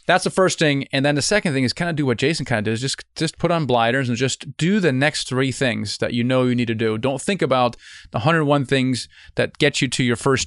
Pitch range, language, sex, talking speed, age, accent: 125-150 Hz, English, male, 280 wpm, 30-49, American